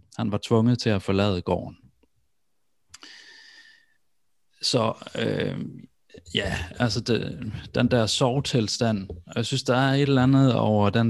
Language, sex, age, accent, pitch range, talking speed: Danish, male, 30-49, native, 100-125 Hz, 135 wpm